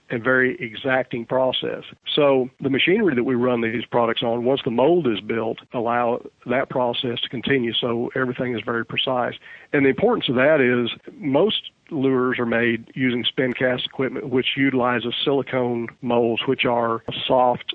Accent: American